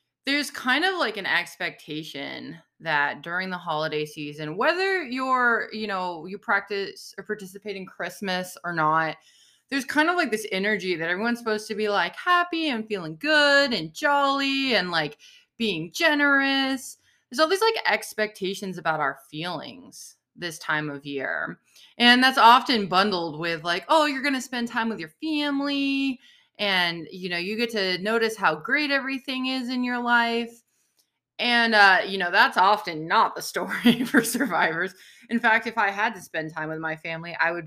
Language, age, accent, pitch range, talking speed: English, 20-39, American, 175-265 Hz, 175 wpm